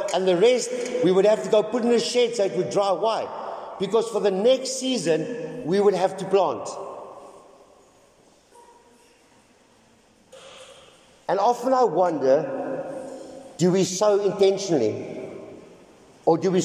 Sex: male